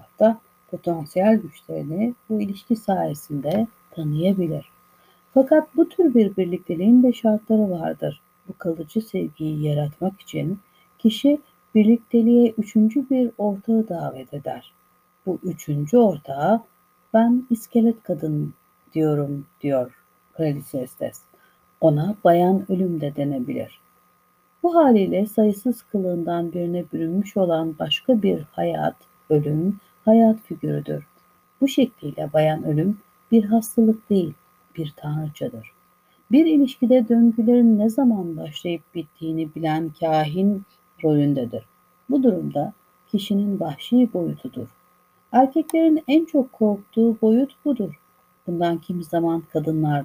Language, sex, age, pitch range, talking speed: Turkish, female, 60-79, 160-220 Hz, 105 wpm